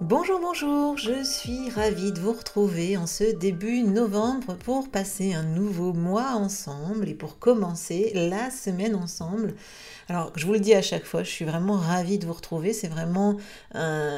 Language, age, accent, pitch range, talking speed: French, 40-59, French, 170-215 Hz, 180 wpm